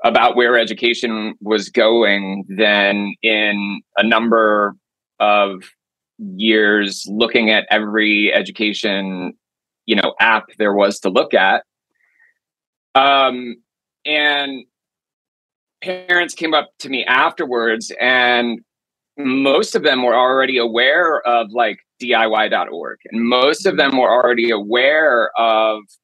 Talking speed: 115 wpm